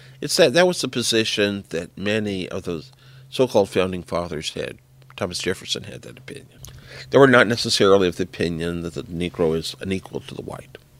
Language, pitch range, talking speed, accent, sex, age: English, 90-130 Hz, 185 wpm, American, male, 50-69